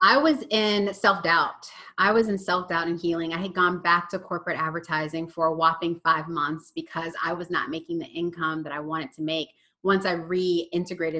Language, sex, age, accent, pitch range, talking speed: English, female, 30-49, American, 160-185 Hz, 210 wpm